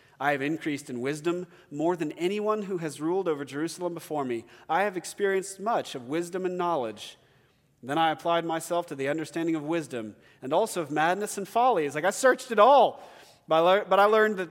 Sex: male